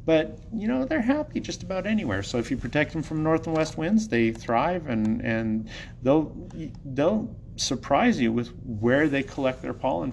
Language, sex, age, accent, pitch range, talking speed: English, male, 30-49, American, 110-135 Hz, 190 wpm